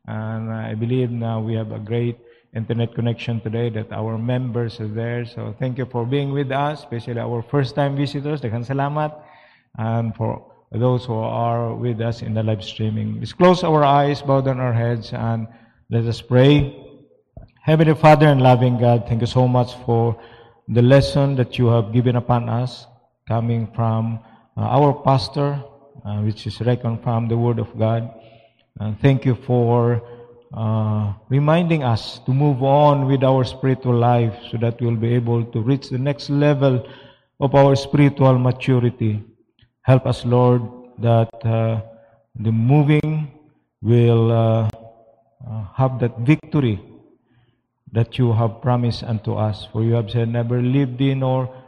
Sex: male